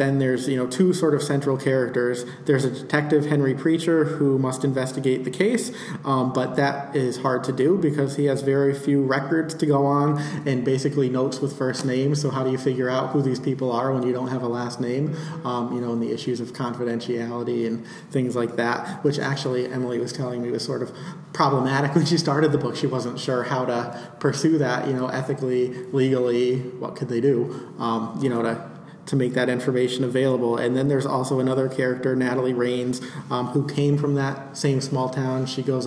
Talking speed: 210 wpm